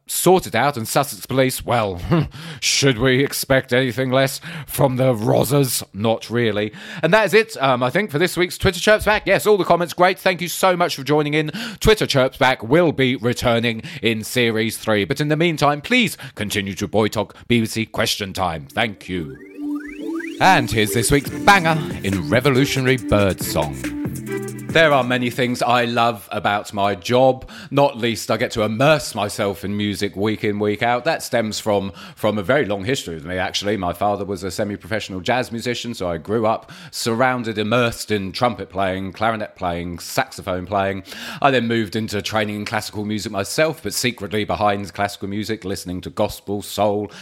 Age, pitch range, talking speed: 30-49, 105-140 Hz, 185 wpm